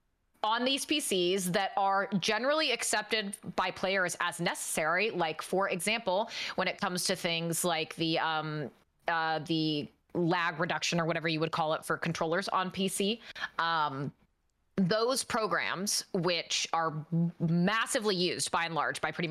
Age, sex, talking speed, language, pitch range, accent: 20-39, female, 150 wpm, English, 170-220 Hz, American